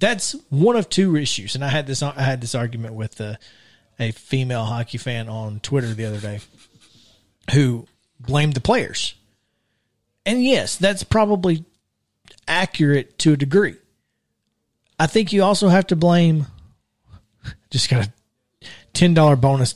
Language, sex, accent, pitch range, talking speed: English, male, American, 115-170 Hz, 150 wpm